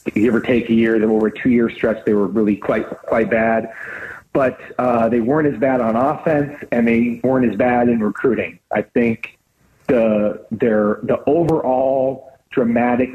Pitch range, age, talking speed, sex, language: 105-120 Hz, 40-59, 170 wpm, male, English